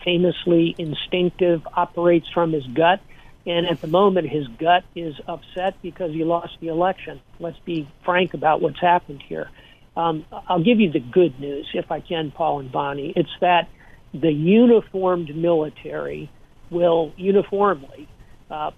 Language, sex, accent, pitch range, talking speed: English, male, American, 155-180 Hz, 150 wpm